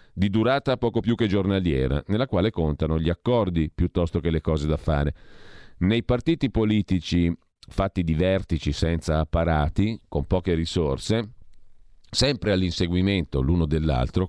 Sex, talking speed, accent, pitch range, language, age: male, 135 wpm, native, 80-110 Hz, Italian, 40-59